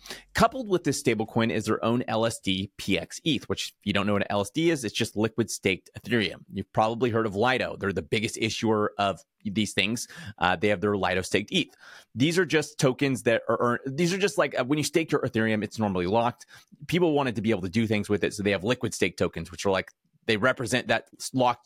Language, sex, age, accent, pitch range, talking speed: English, male, 30-49, American, 105-145 Hz, 235 wpm